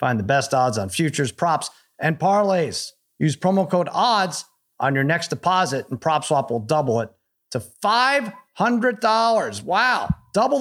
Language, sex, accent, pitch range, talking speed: English, male, American, 145-185 Hz, 145 wpm